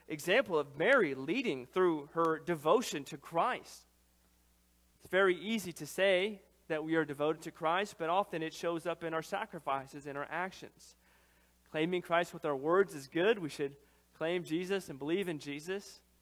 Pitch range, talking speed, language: 145-190 Hz, 170 wpm, English